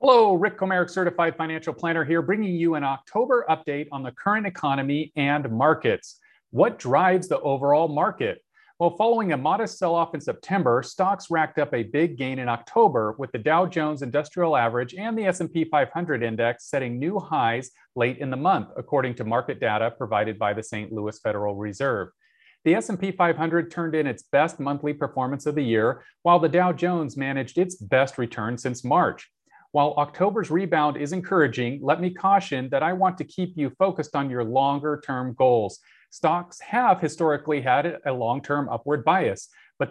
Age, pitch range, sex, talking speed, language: 40-59, 130-180 Hz, male, 175 wpm, English